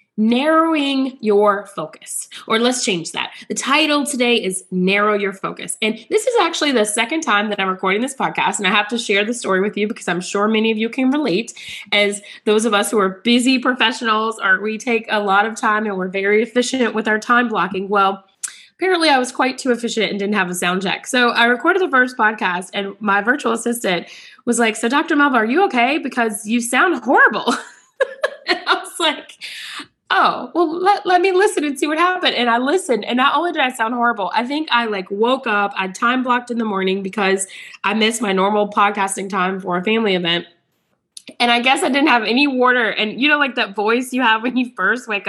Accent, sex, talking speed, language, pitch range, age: American, female, 225 wpm, English, 205-275 Hz, 20-39